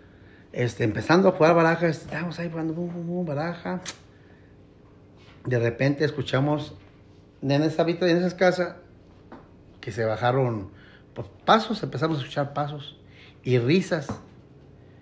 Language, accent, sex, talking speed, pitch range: Spanish, Mexican, male, 110 wpm, 115-155 Hz